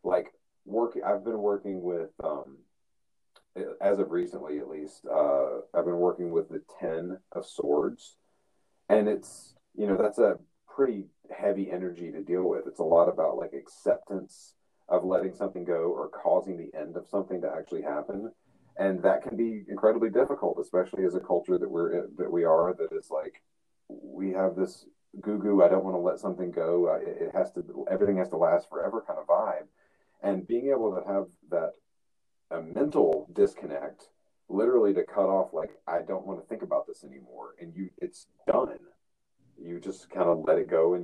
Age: 40-59